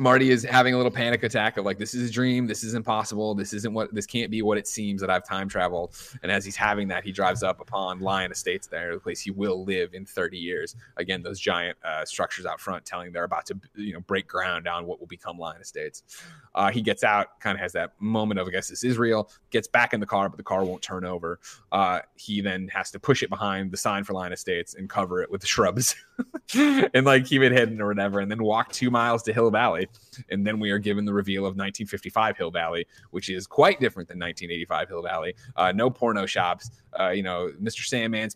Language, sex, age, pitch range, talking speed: English, male, 20-39, 95-115 Hz, 250 wpm